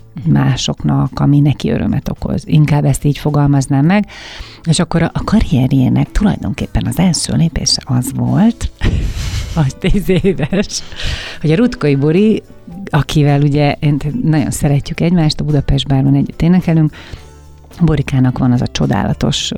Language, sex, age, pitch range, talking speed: Hungarian, female, 30-49, 130-160 Hz, 130 wpm